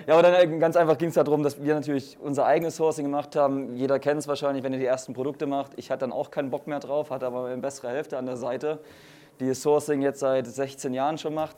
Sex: male